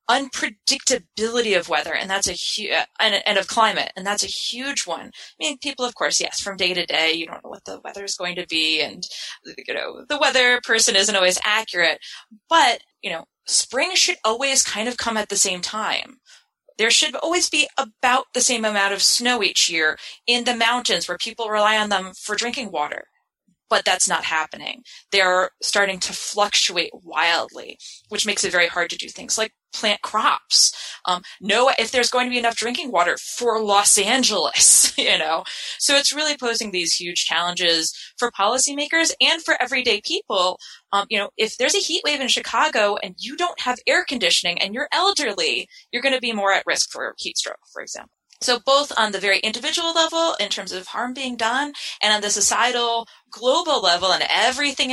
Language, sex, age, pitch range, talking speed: English, female, 20-39, 195-260 Hz, 195 wpm